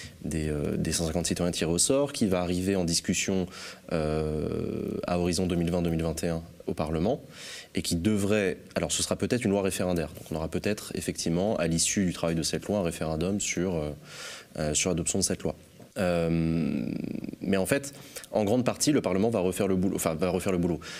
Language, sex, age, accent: French, male, 20-39, French